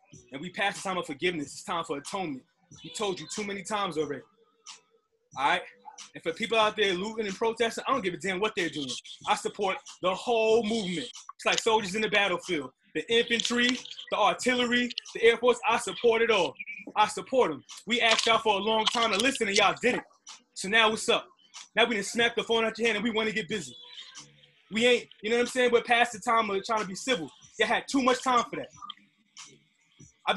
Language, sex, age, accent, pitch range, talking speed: English, male, 20-39, American, 205-255 Hz, 230 wpm